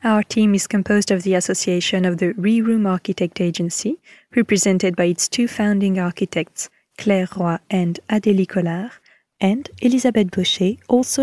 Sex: female